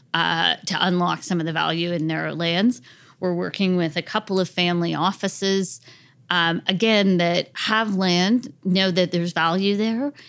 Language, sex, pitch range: English, female, 170-200 Hz